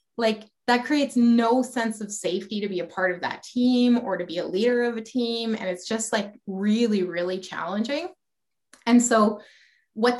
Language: English